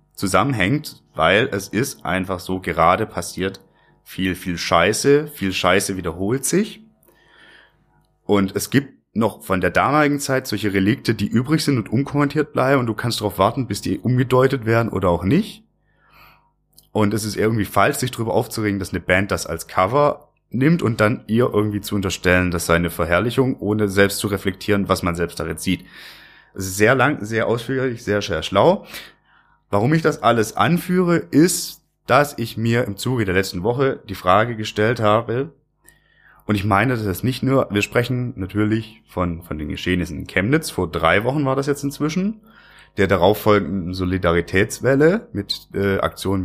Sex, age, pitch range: male, 30-49, 95-130 Hz